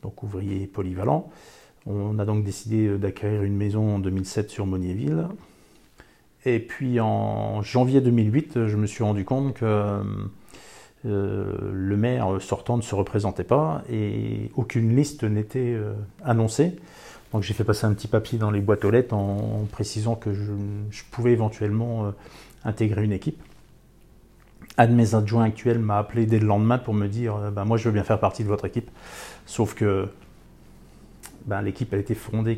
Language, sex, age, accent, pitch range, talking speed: English, male, 40-59, French, 100-115 Hz, 170 wpm